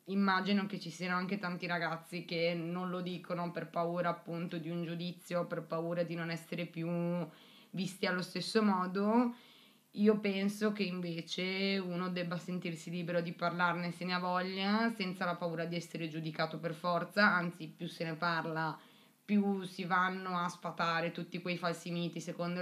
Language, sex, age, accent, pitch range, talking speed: Italian, female, 20-39, native, 170-195 Hz, 170 wpm